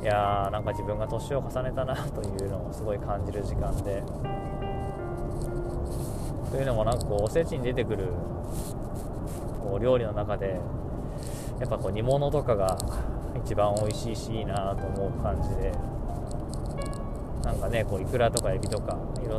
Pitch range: 100-120 Hz